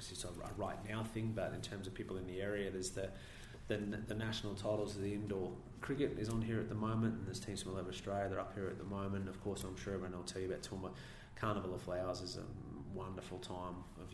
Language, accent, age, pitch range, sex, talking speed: English, Australian, 20-39, 90-100 Hz, male, 260 wpm